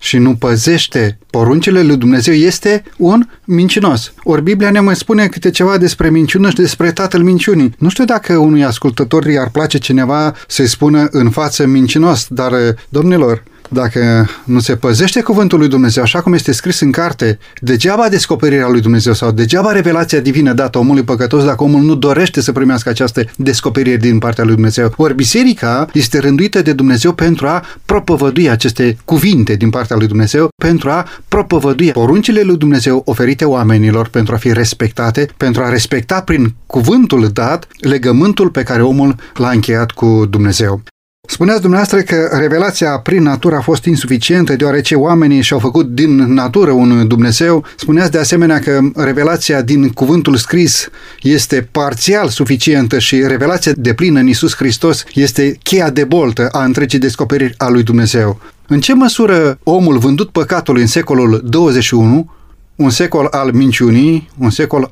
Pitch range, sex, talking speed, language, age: 125-165 Hz, male, 160 wpm, Romanian, 30-49